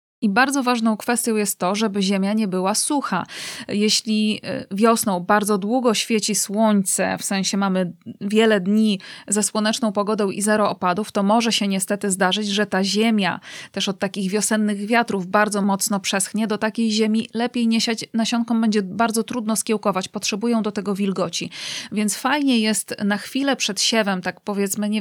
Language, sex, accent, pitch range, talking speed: Polish, female, native, 195-230 Hz, 165 wpm